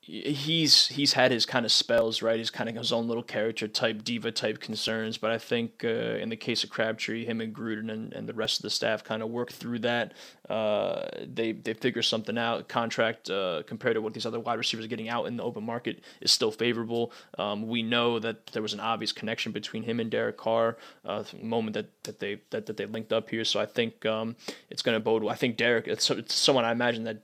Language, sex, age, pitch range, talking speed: English, male, 20-39, 110-125 Hz, 245 wpm